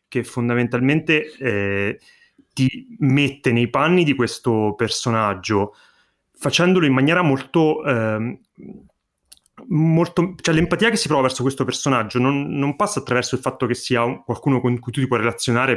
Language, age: Italian, 30-49